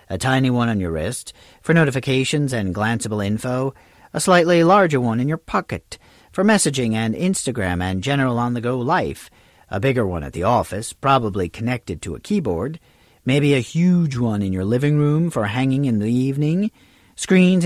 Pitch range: 120-170 Hz